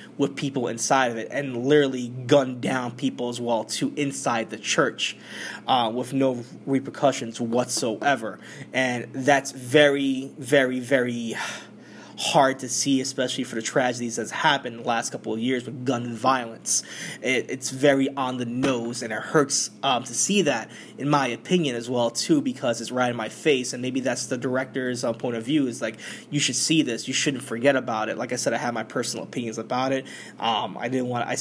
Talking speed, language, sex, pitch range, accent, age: 200 wpm, English, male, 120-135 Hz, American, 20-39